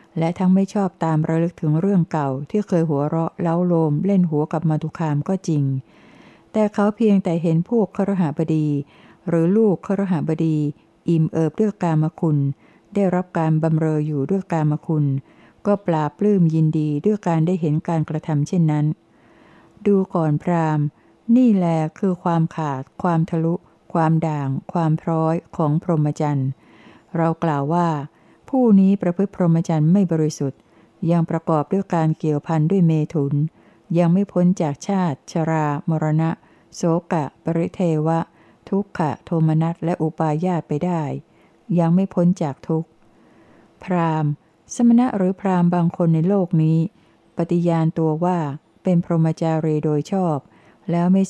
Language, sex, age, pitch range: Thai, female, 60-79, 155-180 Hz